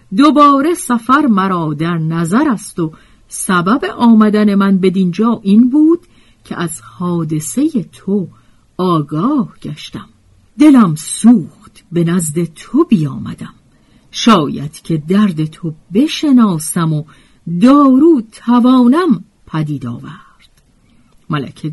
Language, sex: Persian, female